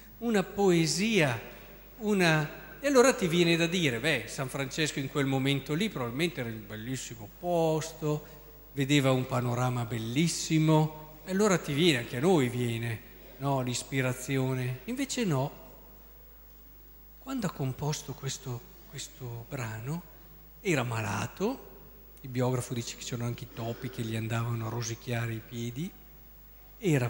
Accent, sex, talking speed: native, male, 135 wpm